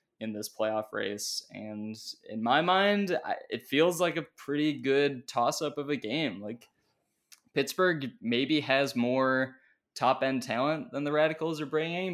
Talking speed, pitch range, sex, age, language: 150 wpm, 115-145 Hz, male, 20-39, English